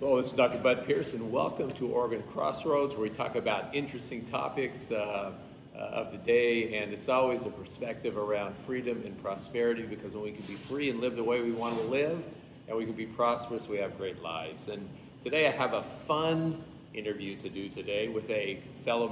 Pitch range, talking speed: 110-135 Hz, 205 wpm